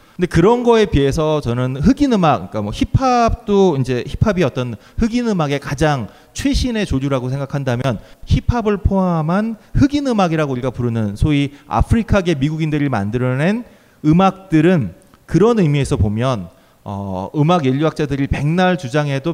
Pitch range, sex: 130-190 Hz, male